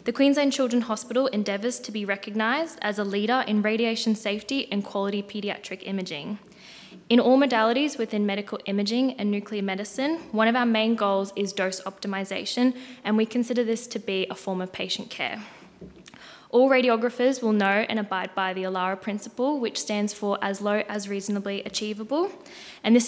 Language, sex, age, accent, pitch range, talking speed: English, female, 10-29, Australian, 205-250 Hz, 170 wpm